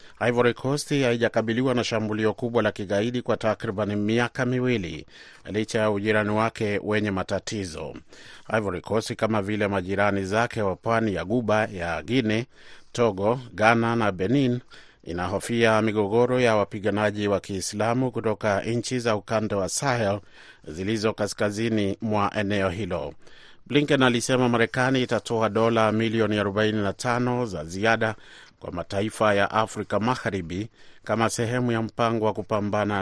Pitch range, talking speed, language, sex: 100-115 Hz, 130 wpm, Swahili, male